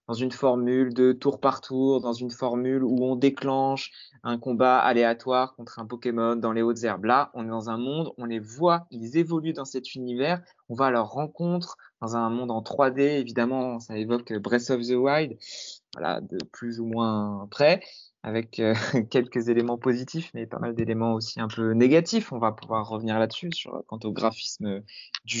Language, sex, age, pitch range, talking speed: French, male, 20-39, 115-140 Hz, 195 wpm